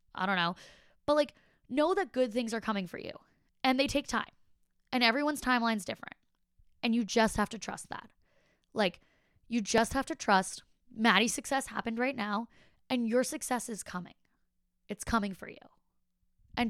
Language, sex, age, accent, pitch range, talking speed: English, female, 20-39, American, 195-260 Hz, 180 wpm